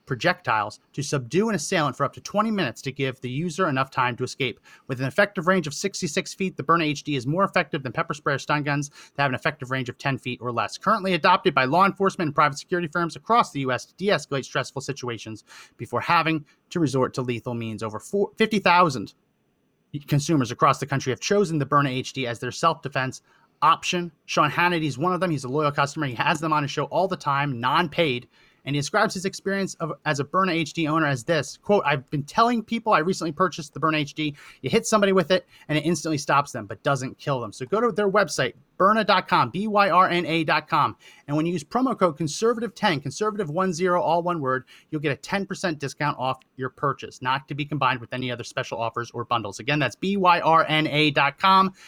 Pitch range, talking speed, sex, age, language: 135-180 Hz, 210 wpm, male, 30-49, English